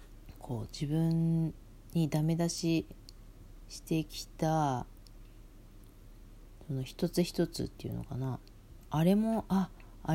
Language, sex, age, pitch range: Japanese, female, 40-59, 105-160 Hz